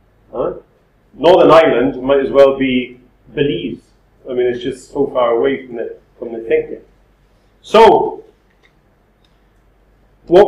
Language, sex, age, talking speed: English, male, 40-59, 125 wpm